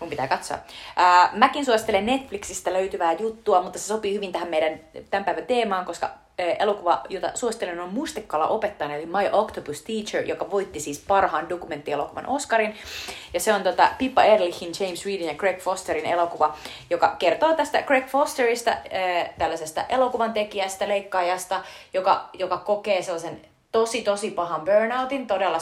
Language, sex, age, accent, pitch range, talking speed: Finnish, female, 30-49, native, 170-225 Hz, 155 wpm